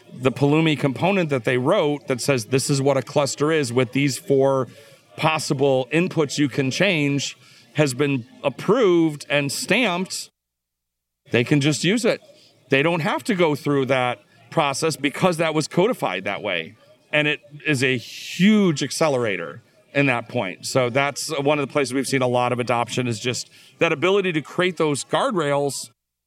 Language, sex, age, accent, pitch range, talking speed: English, male, 40-59, American, 135-175 Hz, 170 wpm